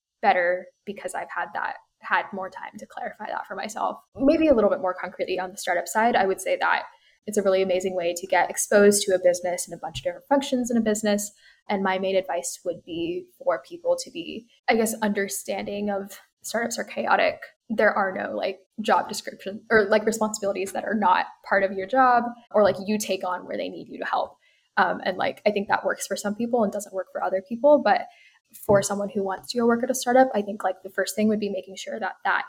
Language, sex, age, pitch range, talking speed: English, female, 10-29, 190-245 Hz, 240 wpm